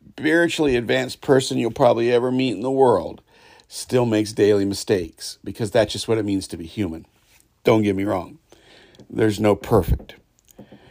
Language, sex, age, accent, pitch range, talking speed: English, male, 50-69, American, 105-130 Hz, 165 wpm